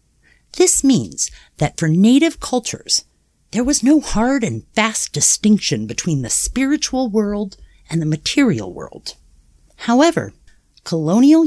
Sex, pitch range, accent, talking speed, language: female, 145-230 Hz, American, 120 wpm, English